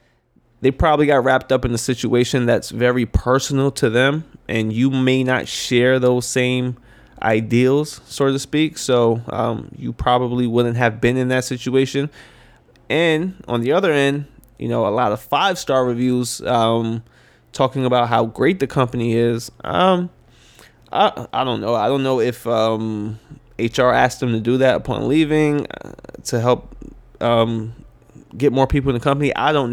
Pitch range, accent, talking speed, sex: 115-135 Hz, American, 170 wpm, male